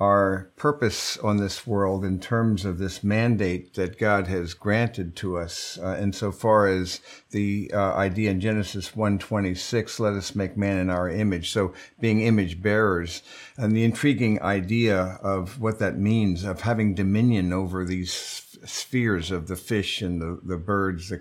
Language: English